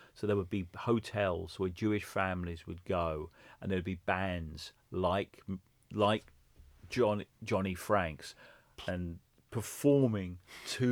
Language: English